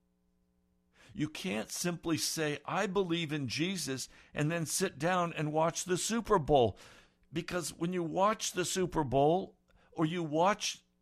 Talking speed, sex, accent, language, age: 145 wpm, male, American, English, 60-79